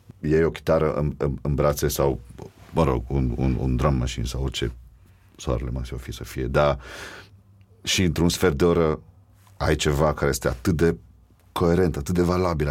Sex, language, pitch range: male, Romanian, 75-105 Hz